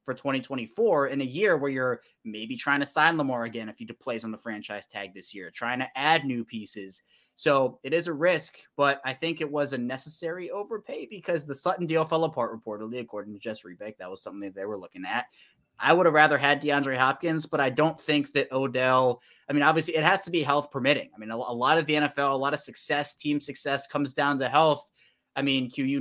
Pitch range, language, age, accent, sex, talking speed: 115-145 Hz, English, 20-39, American, male, 235 wpm